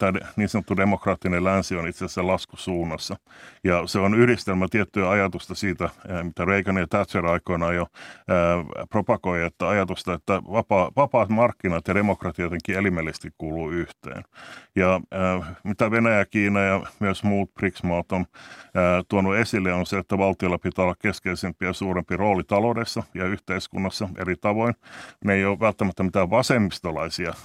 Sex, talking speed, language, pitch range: male, 150 wpm, Finnish, 90-105 Hz